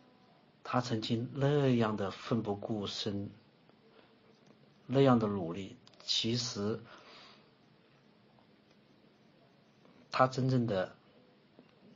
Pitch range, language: 95-120 Hz, Chinese